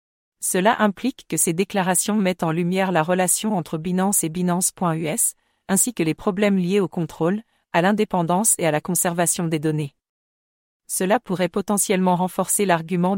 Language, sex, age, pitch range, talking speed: English, female, 40-59, 170-200 Hz, 155 wpm